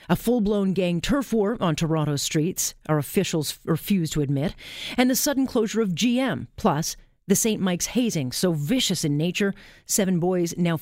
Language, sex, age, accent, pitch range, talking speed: English, female, 40-59, American, 145-195 Hz, 170 wpm